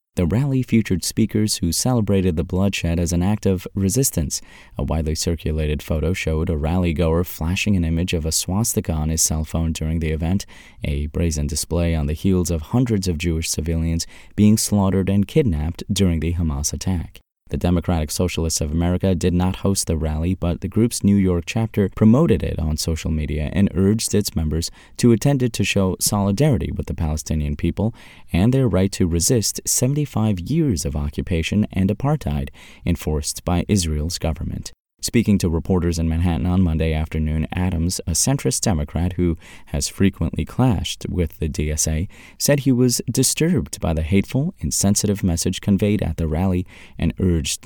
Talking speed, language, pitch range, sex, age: 170 wpm, English, 80-105 Hz, male, 30-49